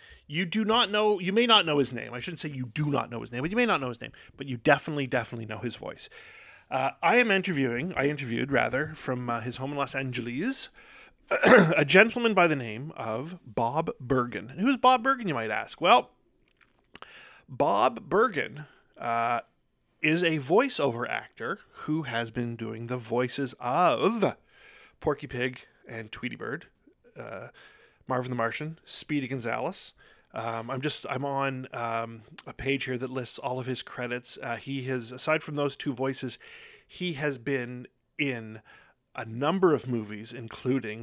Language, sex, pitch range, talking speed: English, male, 115-150 Hz, 175 wpm